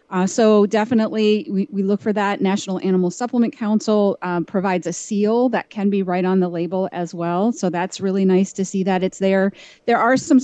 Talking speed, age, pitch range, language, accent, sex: 215 wpm, 30-49, 185-225 Hz, English, American, female